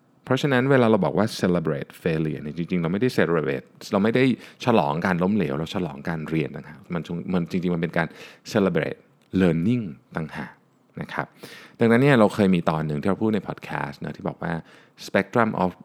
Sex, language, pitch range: male, Thai, 80-110 Hz